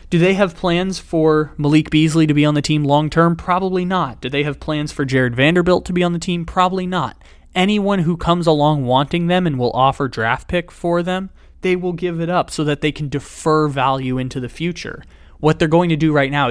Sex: male